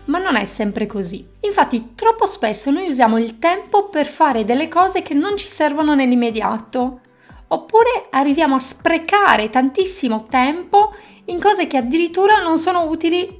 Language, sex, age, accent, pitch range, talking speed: Italian, female, 20-39, native, 220-300 Hz, 150 wpm